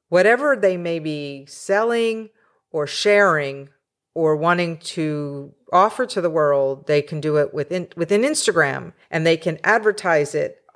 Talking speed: 145 wpm